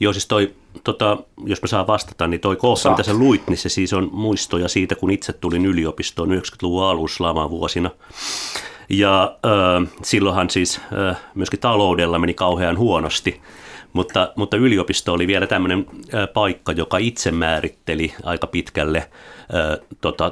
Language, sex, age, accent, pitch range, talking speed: Finnish, male, 30-49, native, 80-95 Hz, 150 wpm